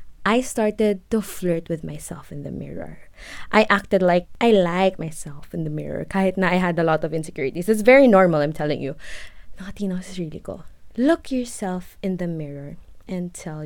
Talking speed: 185 wpm